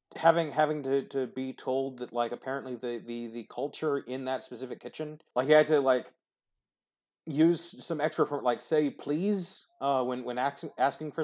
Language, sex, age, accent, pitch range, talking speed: English, male, 30-49, American, 125-155 Hz, 185 wpm